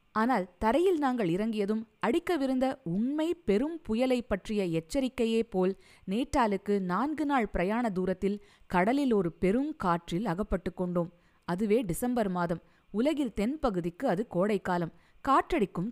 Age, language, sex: 20-39, Tamil, female